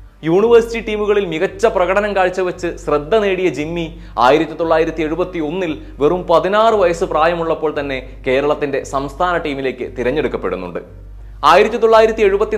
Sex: male